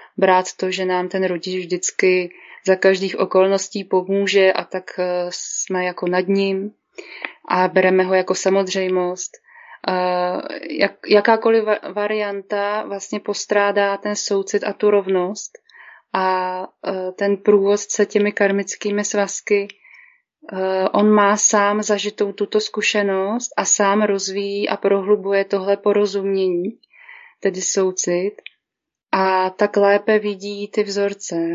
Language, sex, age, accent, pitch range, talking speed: Czech, female, 20-39, native, 185-205 Hz, 110 wpm